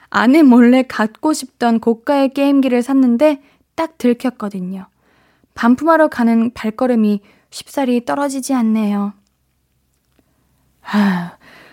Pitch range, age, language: 210-275 Hz, 20-39, Korean